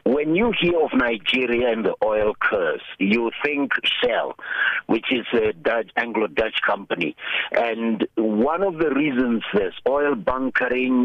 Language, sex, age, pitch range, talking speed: English, male, 60-79, 110-150 Hz, 140 wpm